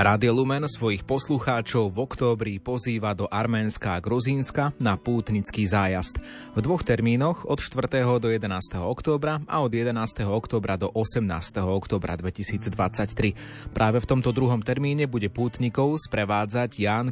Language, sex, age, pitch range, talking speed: Slovak, male, 30-49, 105-125 Hz, 135 wpm